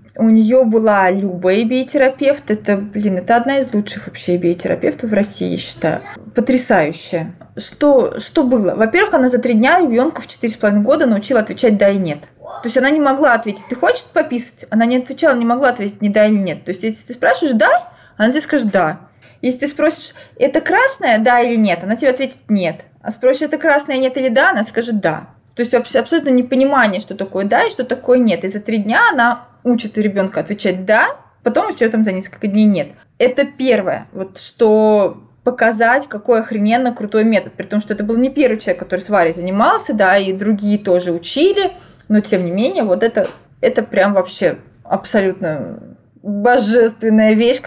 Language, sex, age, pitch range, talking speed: Russian, female, 20-39, 200-260 Hz, 190 wpm